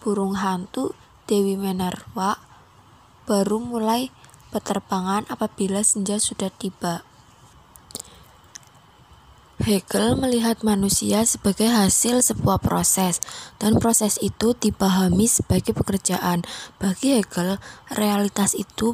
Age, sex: 20-39, female